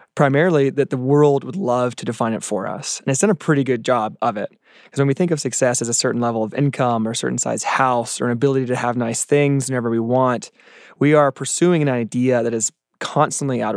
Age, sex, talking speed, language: 20-39, male, 245 wpm, English